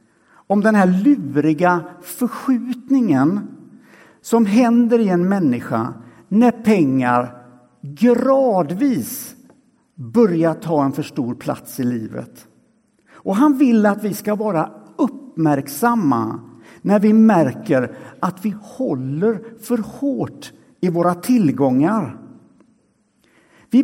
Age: 60-79